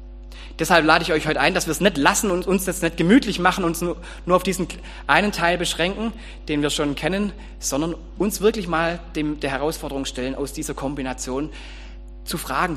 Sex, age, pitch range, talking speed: male, 30-49, 120-170 Hz, 195 wpm